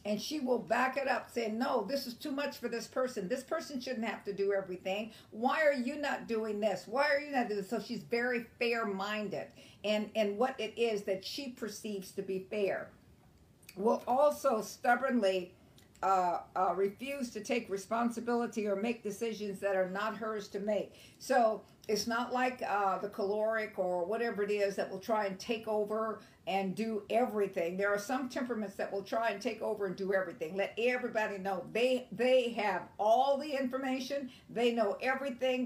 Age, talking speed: 50-69, 185 wpm